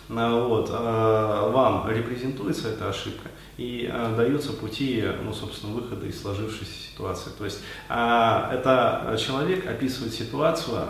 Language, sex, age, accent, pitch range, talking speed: Russian, male, 20-39, native, 105-130 Hz, 110 wpm